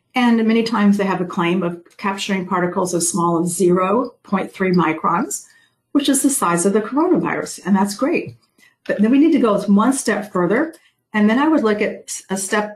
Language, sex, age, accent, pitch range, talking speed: English, female, 50-69, American, 175-215 Hz, 200 wpm